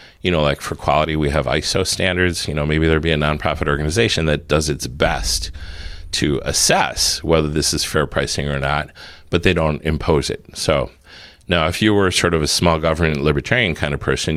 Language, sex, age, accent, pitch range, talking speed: English, male, 40-59, American, 70-85 Hz, 205 wpm